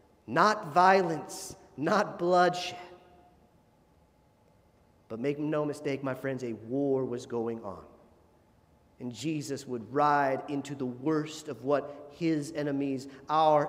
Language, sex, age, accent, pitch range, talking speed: English, male, 40-59, American, 145-200 Hz, 120 wpm